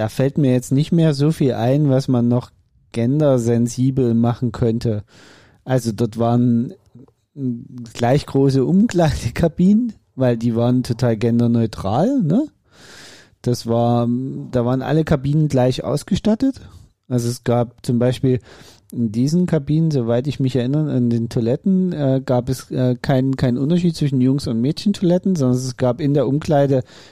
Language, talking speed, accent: German, 140 wpm, German